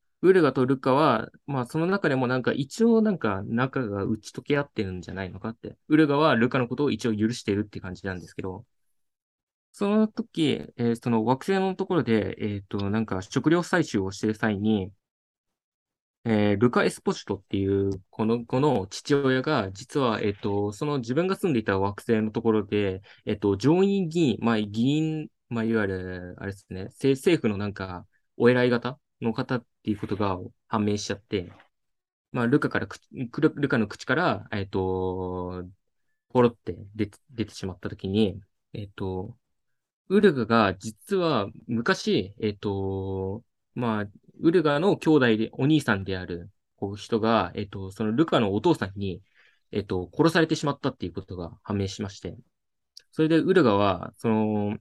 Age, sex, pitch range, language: 20-39, male, 100-140 Hz, Japanese